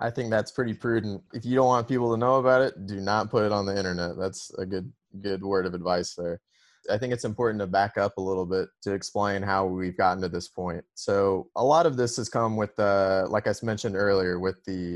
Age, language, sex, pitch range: 20-39, English, male, 95-110 Hz